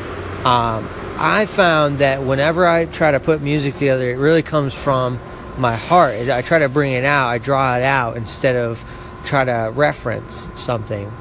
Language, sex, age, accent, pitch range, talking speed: English, male, 30-49, American, 115-140 Hz, 175 wpm